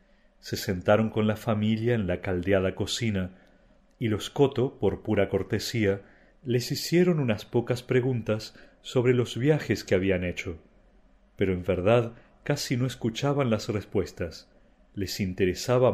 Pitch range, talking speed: 95-125 Hz, 135 wpm